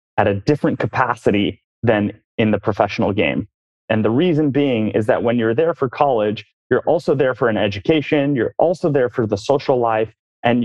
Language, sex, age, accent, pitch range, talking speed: English, male, 30-49, American, 105-130 Hz, 190 wpm